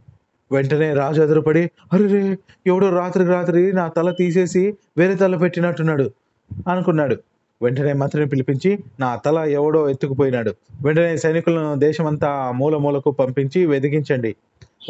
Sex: male